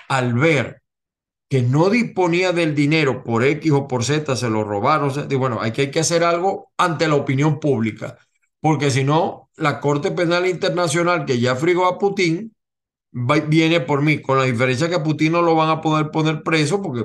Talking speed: 185 wpm